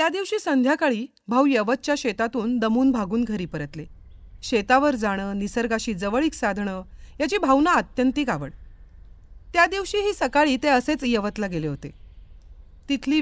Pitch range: 200-275 Hz